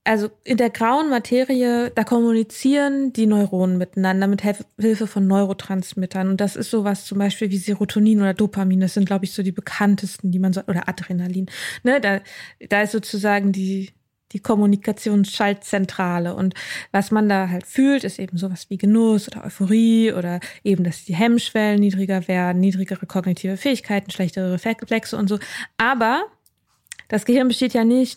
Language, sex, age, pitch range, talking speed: German, female, 20-39, 195-230 Hz, 165 wpm